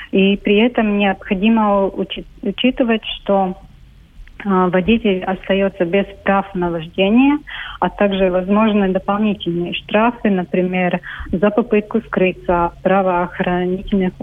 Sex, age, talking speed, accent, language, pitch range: female, 30-49, 100 wpm, native, Russian, 180-205 Hz